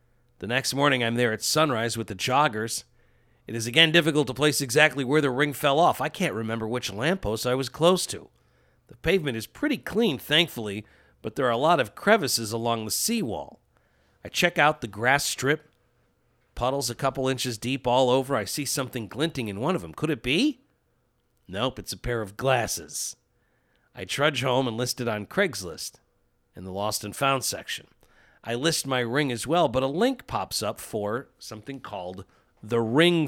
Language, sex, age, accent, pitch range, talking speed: English, male, 40-59, American, 115-150 Hz, 195 wpm